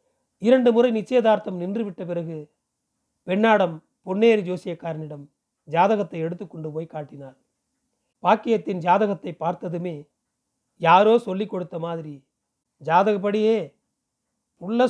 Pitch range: 175-225 Hz